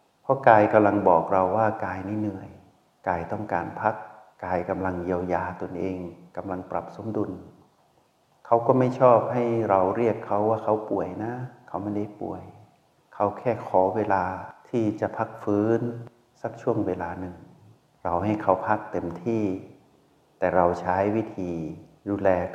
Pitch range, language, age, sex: 90-110 Hz, Thai, 60-79, male